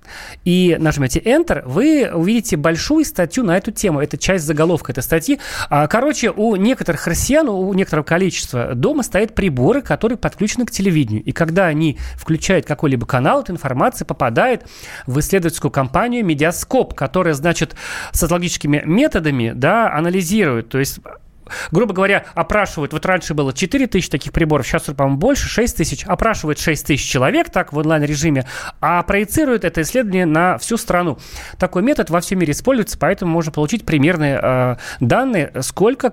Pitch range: 150-210 Hz